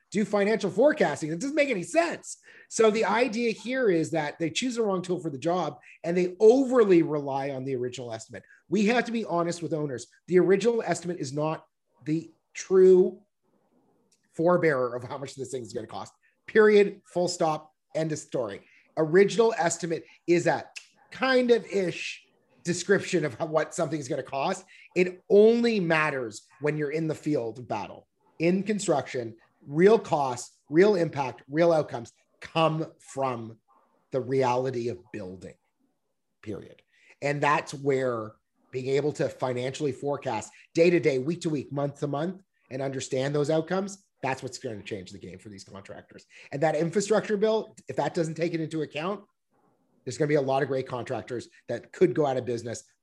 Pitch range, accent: 130-185 Hz, American